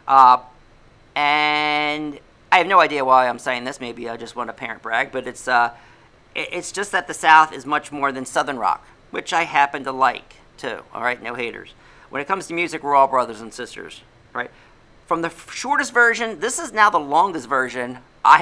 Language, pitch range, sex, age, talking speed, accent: English, 125-150 Hz, male, 40-59, 210 wpm, American